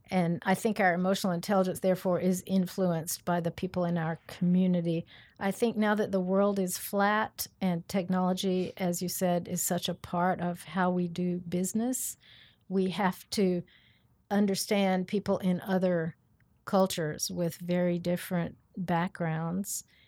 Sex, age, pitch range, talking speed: female, 50-69, 165-185 Hz, 145 wpm